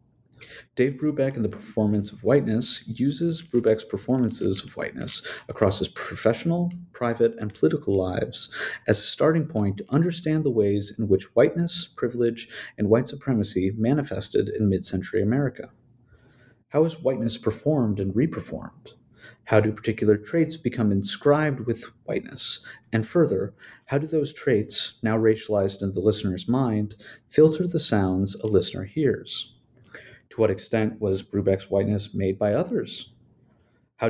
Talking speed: 140 wpm